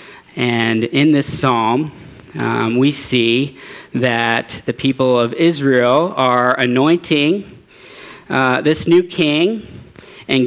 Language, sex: English, male